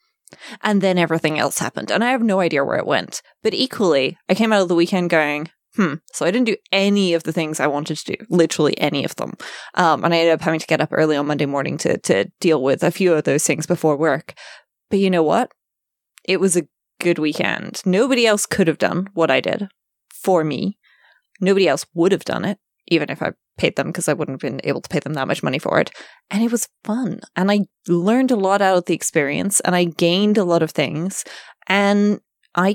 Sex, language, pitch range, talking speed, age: female, English, 160-200 Hz, 235 wpm, 20-39